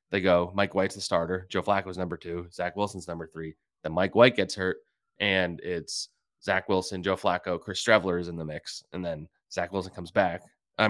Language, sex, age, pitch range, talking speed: English, male, 20-39, 85-100 Hz, 210 wpm